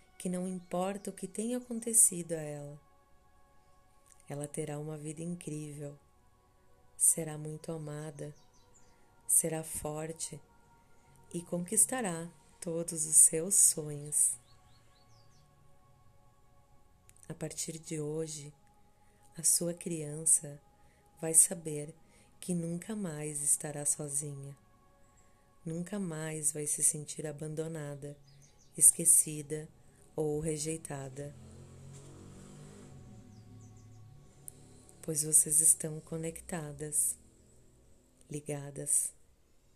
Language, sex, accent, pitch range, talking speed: Portuguese, female, Brazilian, 135-165 Hz, 80 wpm